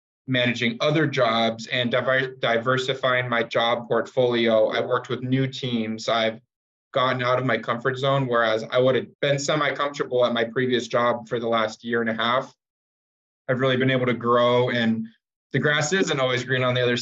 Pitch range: 115-135 Hz